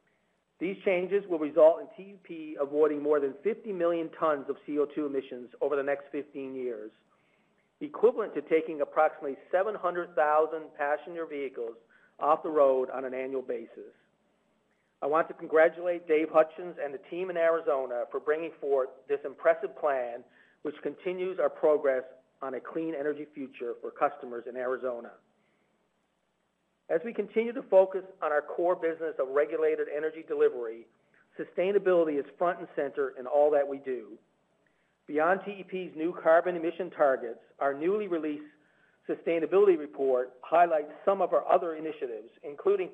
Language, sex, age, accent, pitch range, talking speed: English, male, 40-59, American, 145-190 Hz, 145 wpm